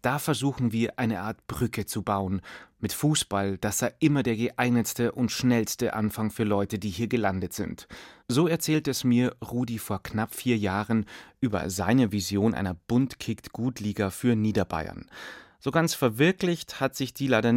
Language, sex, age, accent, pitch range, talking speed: German, male, 30-49, German, 105-130 Hz, 160 wpm